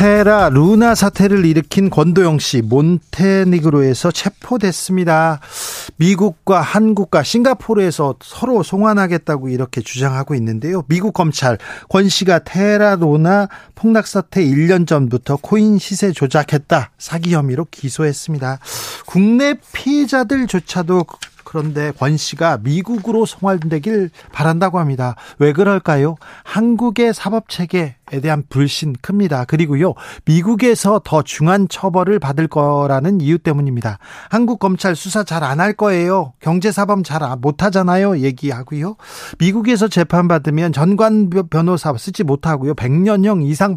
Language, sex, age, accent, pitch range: Korean, male, 40-59, native, 150-200 Hz